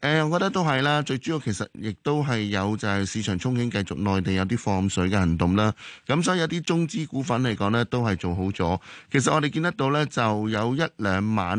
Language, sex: Chinese, male